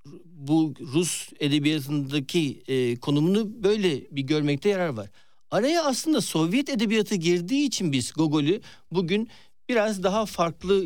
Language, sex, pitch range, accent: Turkish, male, 135-190 Hz, native